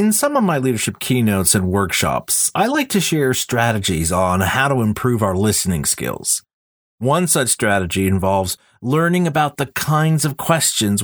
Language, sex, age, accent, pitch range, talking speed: English, male, 40-59, American, 105-160 Hz, 165 wpm